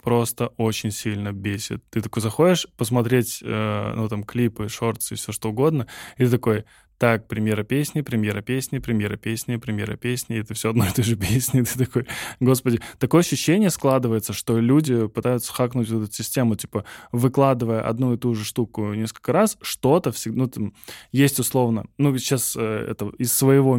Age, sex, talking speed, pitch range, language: 10-29, male, 170 wpm, 110-135 Hz, Russian